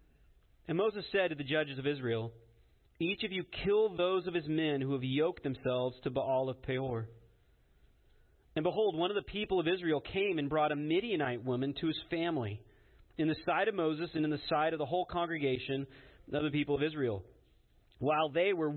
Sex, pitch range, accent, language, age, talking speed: male, 120-160 Hz, American, English, 40-59, 200 wpm